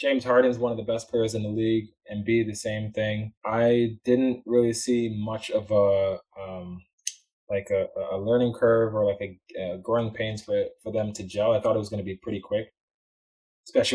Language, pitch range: English, 95-115 Hz